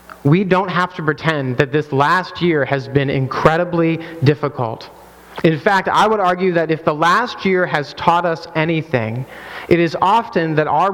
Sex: male